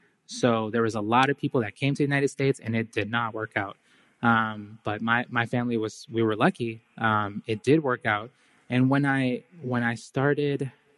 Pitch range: 115-130 Hz